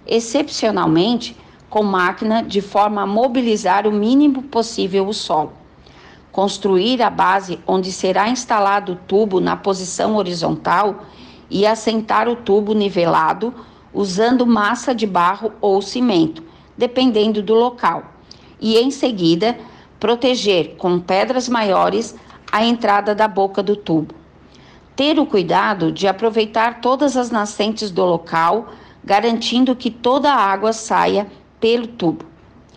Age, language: 50-69, Portuguese